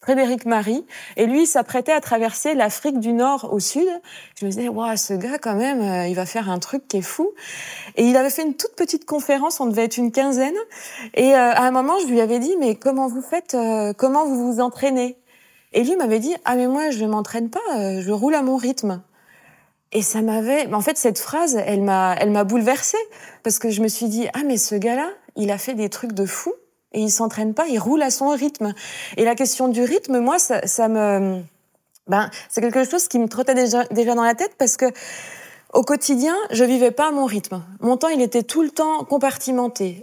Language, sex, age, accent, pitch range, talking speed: French, female, 20-39, French, 215-265 Hz, 230 wpm